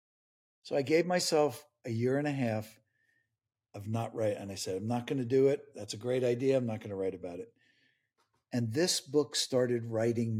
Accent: American